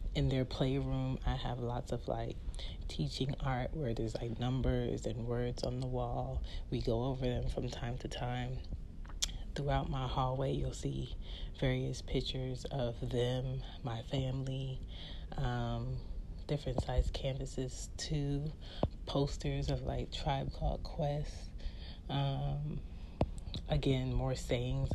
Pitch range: 115-140 Hz